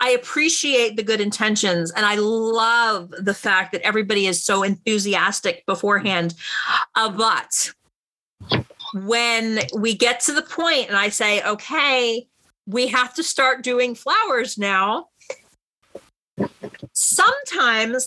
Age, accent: 40-59, American